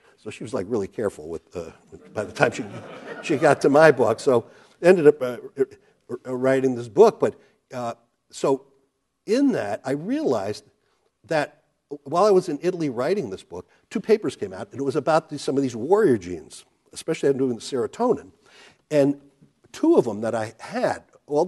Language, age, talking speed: English, 60-79, 185 wpm